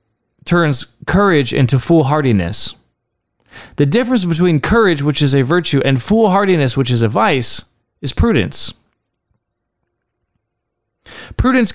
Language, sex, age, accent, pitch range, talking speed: English, male, 20-39, American, 120-175 Hz, 105 wpm